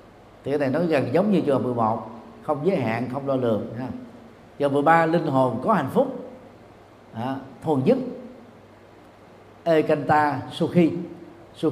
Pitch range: 120-165 Hz